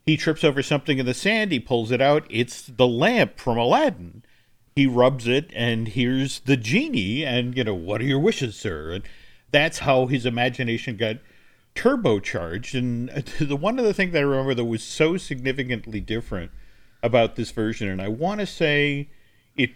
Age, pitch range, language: 50-69, 115-155 Hz, English